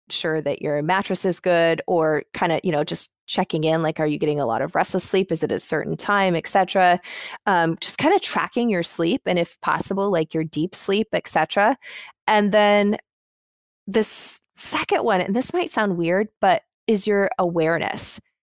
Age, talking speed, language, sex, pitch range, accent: 20-39, 195 wpm, English, female, 165-210 Hz, American